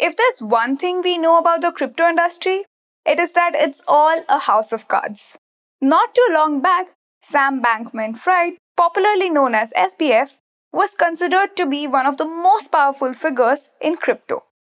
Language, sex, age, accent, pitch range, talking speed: English, female, 20-39, Indian, 265-345 Hz, 170 wpm